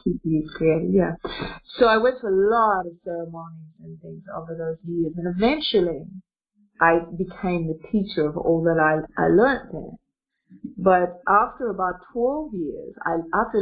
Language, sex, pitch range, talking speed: English, female, 170-215 Hz, 165 wpm